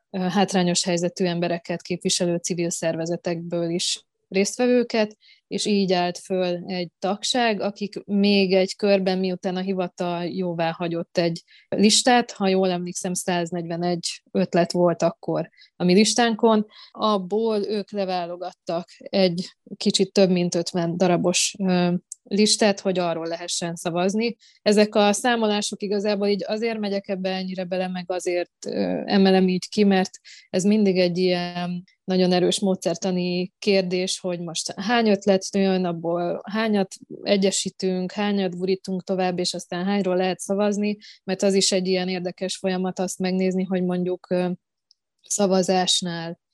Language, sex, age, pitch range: Hungarian, female, 20-39, 175-200 Hz